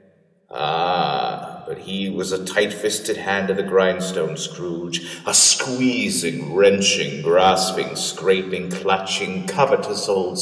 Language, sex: English, male